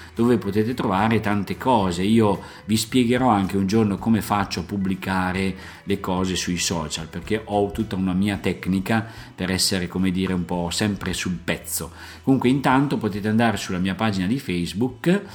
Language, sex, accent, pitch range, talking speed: Italian, male, native, 90-110 Hz, 170 wpm